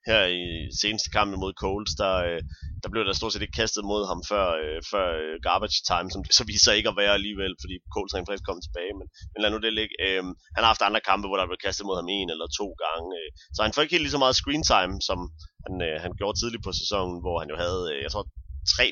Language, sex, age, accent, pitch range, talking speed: Danish, male, 30-49, native, 90-120 Hz, 245 wpm